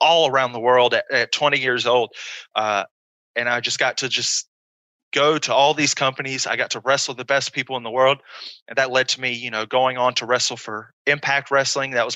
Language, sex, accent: English, male, American